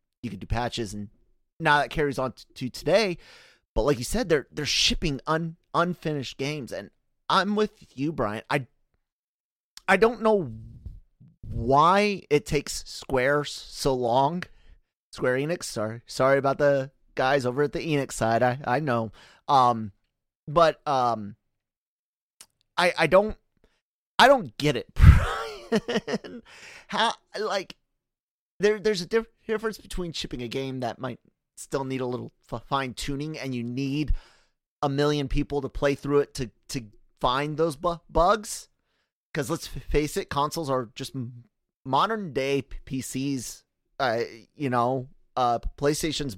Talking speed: 140 wpm